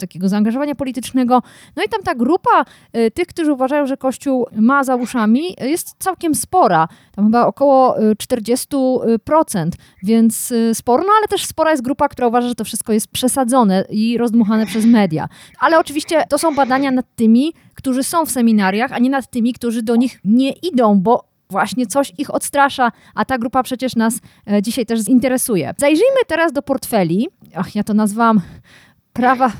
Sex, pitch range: female, 225-295 Hz